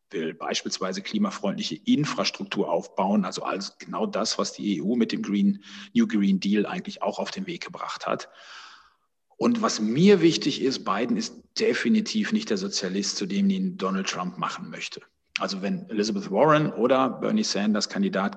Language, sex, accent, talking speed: German, male, German, 165 wpm